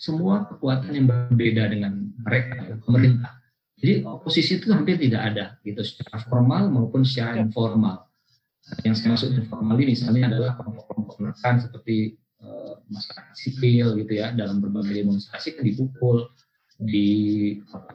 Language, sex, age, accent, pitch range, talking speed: Indonesian, male, 50-69, native, 105-130 Hz, 130 wpm